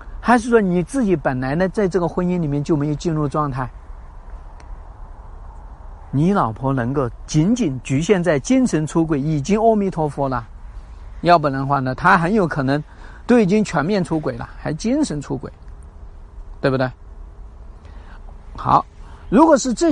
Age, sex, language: 50-69, male, Chinese